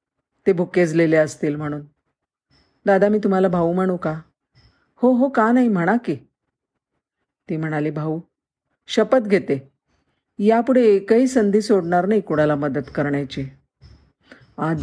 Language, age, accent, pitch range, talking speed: Marathi, 50-69, native, 155-210 Hz, 125 wpm